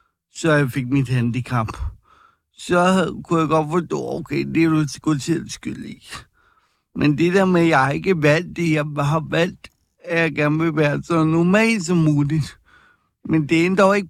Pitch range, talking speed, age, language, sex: 130-165 Hz, 185 wpm, 60-79, Danish, male